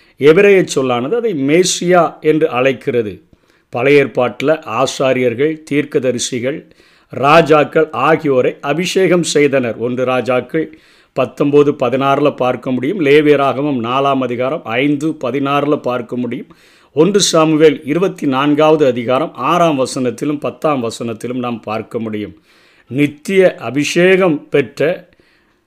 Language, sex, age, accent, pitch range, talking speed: Tamil, male, 50-69, native, 130-160 Hz, 100 wpm